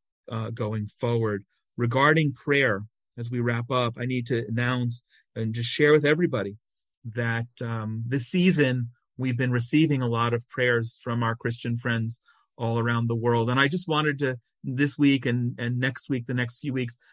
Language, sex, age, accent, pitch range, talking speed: English, male, 40-59, American, 115-135 Hz, 180 wpm